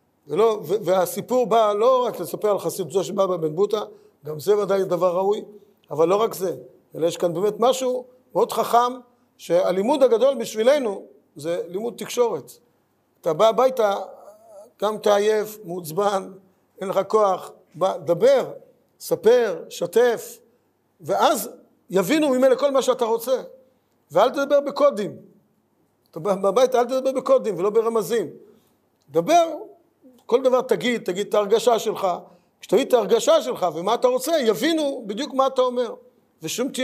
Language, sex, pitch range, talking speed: Hebrew, male, 195-310 Hz, 140 wpm